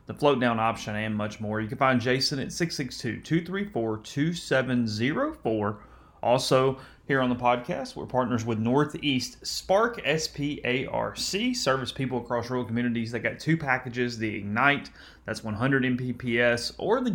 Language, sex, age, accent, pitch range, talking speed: English, male, 30-49, American, 115-135 Hz, 135 wpm